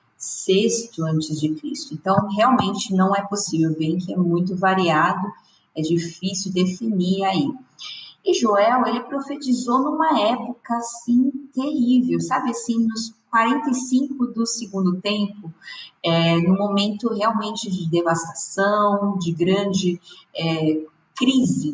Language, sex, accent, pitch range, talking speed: Portuguese, female, Brazilian, 170-245 Hz, 120 wpm